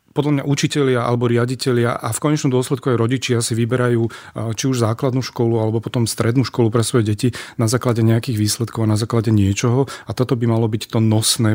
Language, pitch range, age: Slovak, 110-125 Hz, 40-59